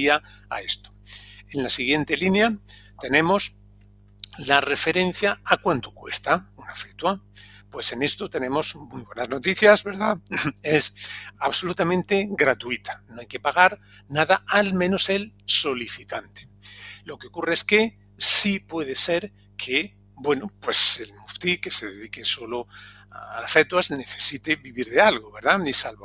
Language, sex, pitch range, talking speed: Spanish, male, 110-170 Hz, 140 wpm